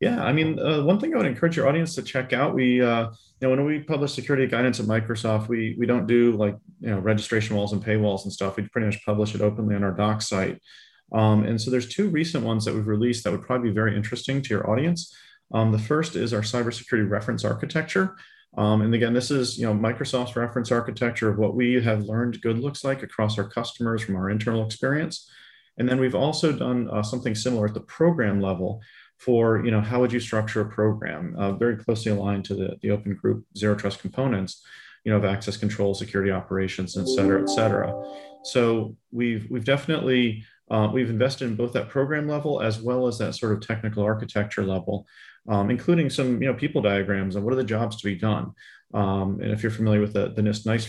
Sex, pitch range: male, 105-125 Hz